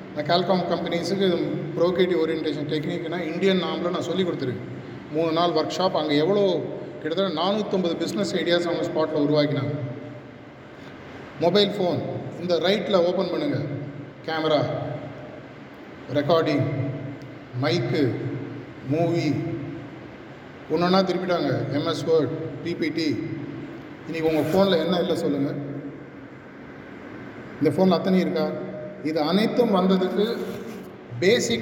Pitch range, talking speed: 145-175 Hz, 100 wpm